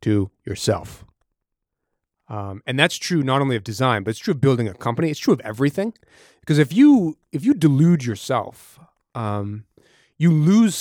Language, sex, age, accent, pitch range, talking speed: English, male, 30-49, American, 105-140 Hz, 170 wpm